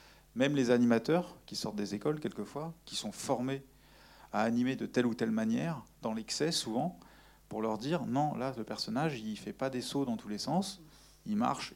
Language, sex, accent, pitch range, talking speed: French, male, French, 115-150 Hz, 205 wpm